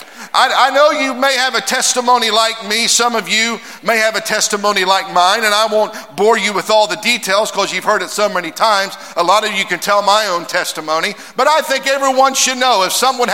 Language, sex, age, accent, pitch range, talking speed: English, male, 50-69, American, 210-260 Hz, 230 wpm